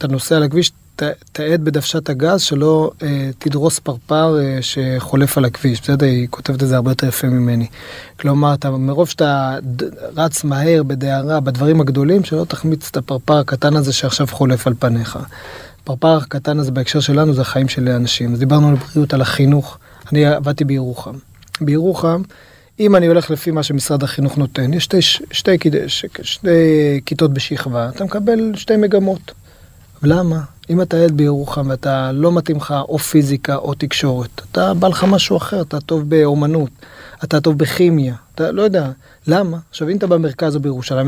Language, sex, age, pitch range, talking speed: Hebrew, male, 30-49, 135-165 Hz, 160 wpm